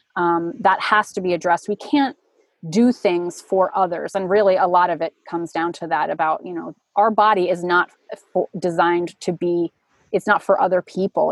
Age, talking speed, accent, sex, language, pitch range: 30-49, 200 wpm, American, female, English, 170-200 Hz